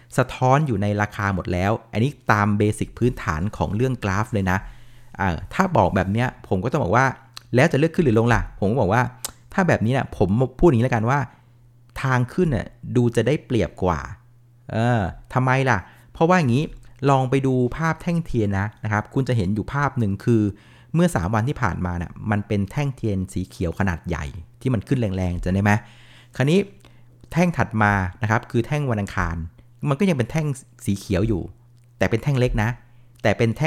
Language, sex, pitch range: Thai, male, 105-135 Hz